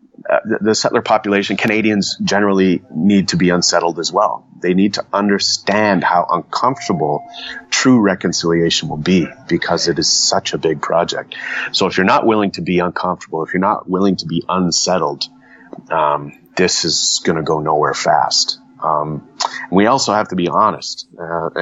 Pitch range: 85-100 Hz